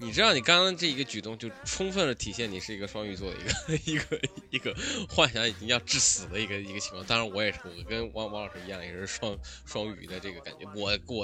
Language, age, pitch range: Chinese, 20-39, 100-145 Hz